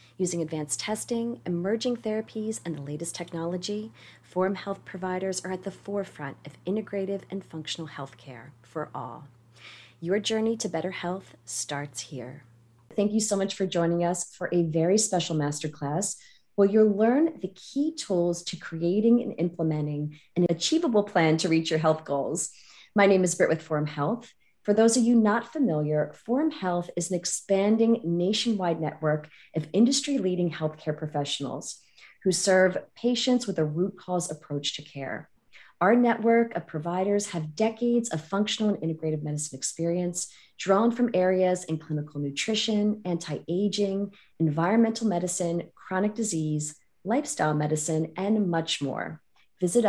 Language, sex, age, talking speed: English, female, 30-49, 150 wpm